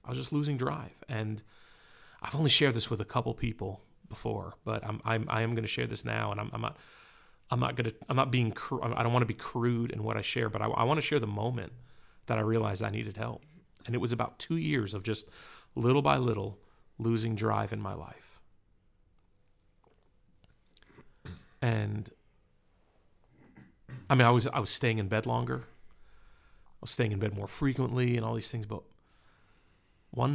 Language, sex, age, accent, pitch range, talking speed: English, male, 40-59, American, 100-125 Hz, 200 wpm